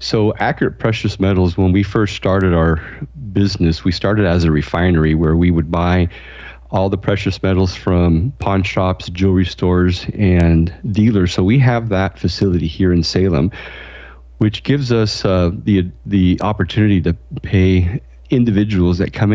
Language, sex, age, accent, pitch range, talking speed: English, male, 40-59, American, 85-100 Hz, 155 wpm